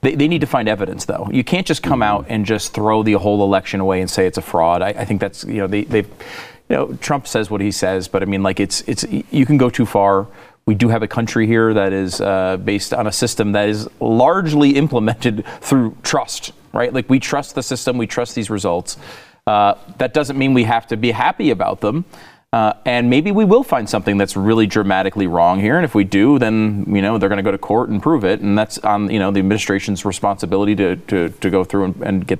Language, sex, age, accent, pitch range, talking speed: English, male, 30-49, American, 100-120 Hz, 245 wpm